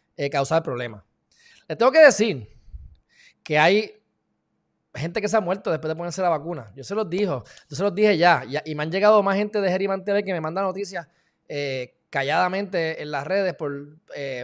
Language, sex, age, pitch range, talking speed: Spanish, male, 20-39, 140-190 Hz, 205 wpm